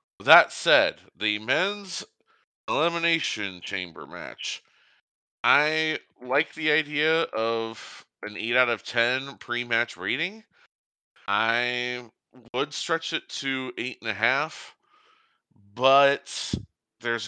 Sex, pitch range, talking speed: male, 105-135 Hz, 95 wpm